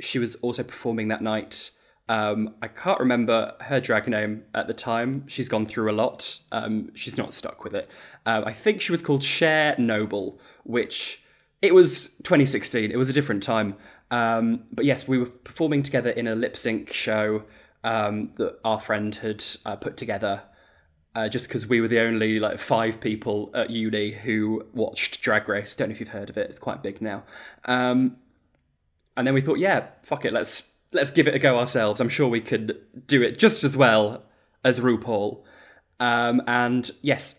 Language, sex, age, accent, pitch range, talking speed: English, male, 10-29, British, 110-130 Hz, 195 wpm